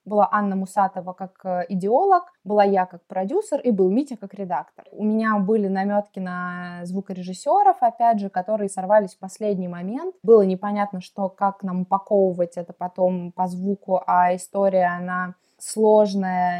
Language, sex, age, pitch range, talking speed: Russian, female, 20-39, 185-215 Hz, 150 wpm